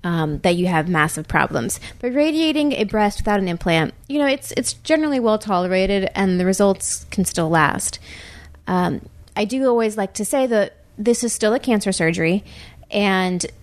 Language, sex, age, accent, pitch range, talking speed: English, female, 30-49, American, 180-215 Hz, 175 wpm